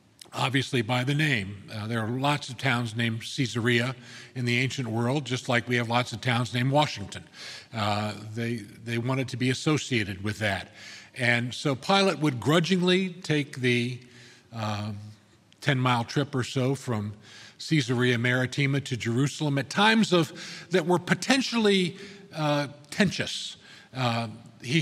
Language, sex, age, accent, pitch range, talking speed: English, male, 50-69, American, 125-180 Hz, 145 wpm